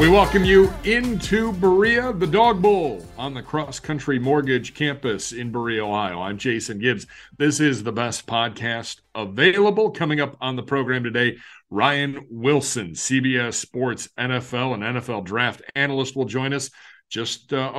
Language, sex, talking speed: English, male, 150 wpm